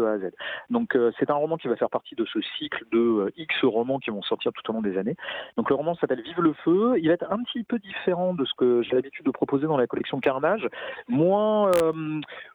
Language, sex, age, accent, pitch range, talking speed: French, male, 40-59, French, 115-170 Hz, 255 wpm